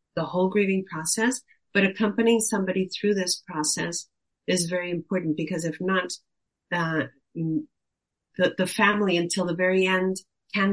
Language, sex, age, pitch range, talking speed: German, female, 40-59, 165-205 Hz, 140 wpm